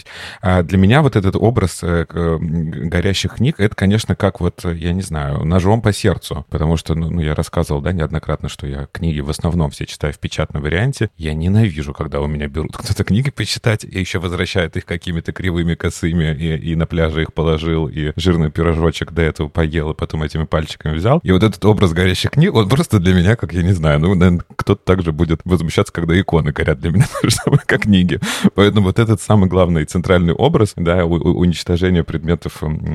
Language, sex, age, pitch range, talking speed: Russian, male, 30-49, 80-95 Hz, 195 wpm